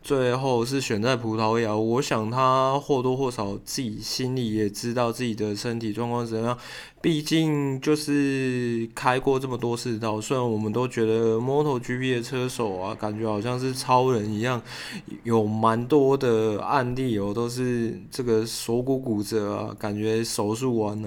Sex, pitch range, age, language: male, 110-130 Hz, 20-39, Chinese